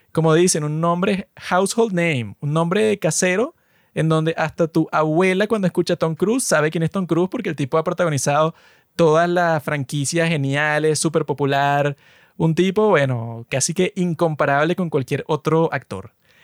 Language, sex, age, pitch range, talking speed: Spanish, male, 20-39, 145-185 Hz, 165 wpm